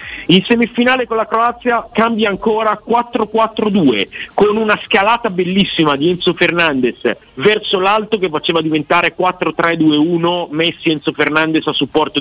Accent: native